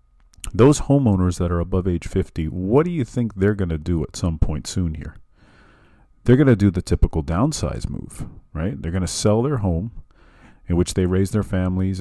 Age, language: 40-59, English